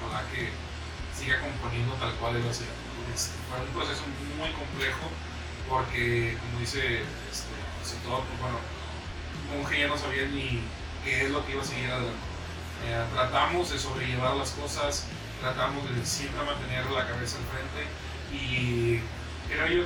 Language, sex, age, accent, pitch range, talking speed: Spanish, male, 30-49, Mexican, 90-135 Hz, 160 wpm